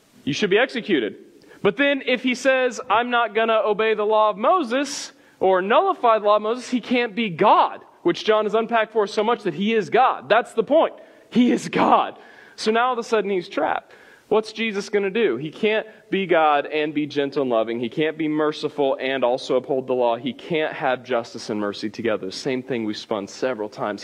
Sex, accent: male, American